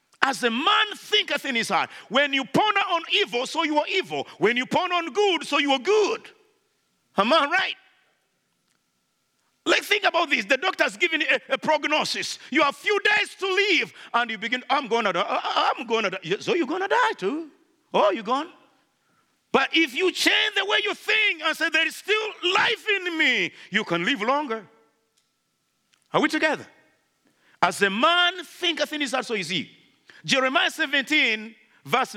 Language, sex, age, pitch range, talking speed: English, male, 50-69, 265-365 Hz, 190 wpm